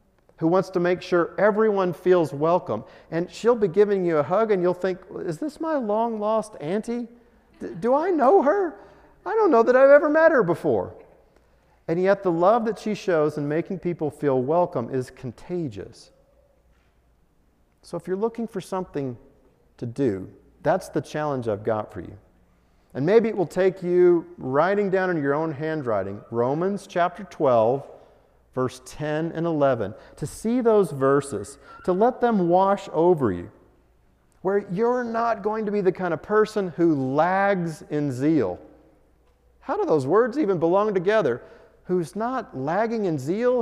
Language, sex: English, male